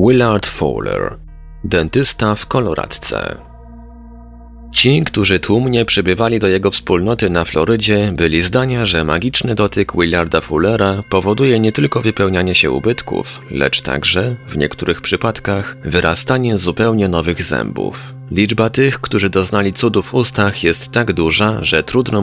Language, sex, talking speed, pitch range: Polish, male, 130 wpm, 85-110 Hz